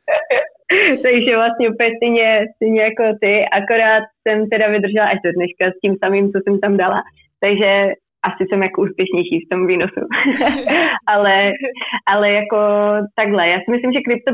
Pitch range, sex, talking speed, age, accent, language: 185-210 Hz, female, 155 wpm, 20-39, native, Czech